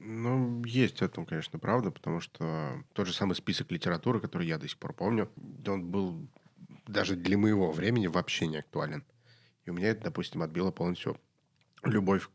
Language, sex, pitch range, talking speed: Russian, male, 90-105 Hz, 170 wpm